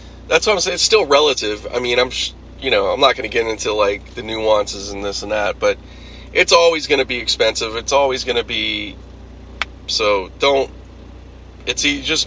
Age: 30-49